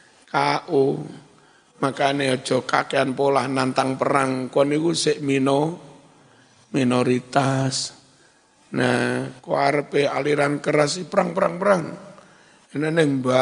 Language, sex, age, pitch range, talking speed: Indonesian, male, 50-69, 130-155 Hz, 90 wpm